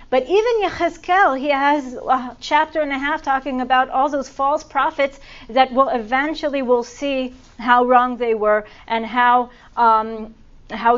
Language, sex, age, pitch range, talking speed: English, female, 40-59, 225-300 Hz, 160 wpm